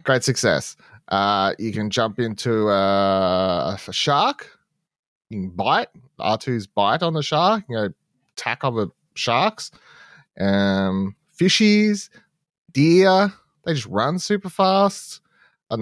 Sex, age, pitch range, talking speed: male, 20-39, 100-140 Hz, 135 wpm